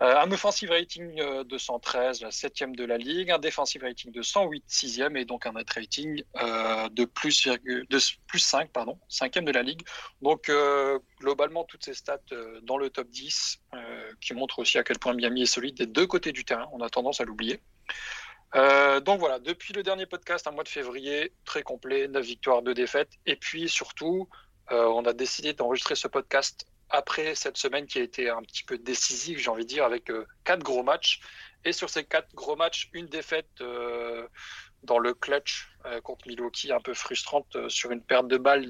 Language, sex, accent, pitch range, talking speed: French, male, French, 120-160 Hz, 200 wpm